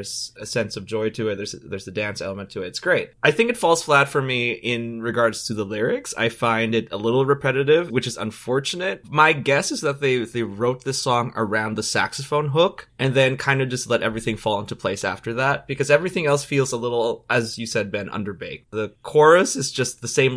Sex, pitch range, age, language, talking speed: male, 110-140 Hz, 20-39, English, 230 wpm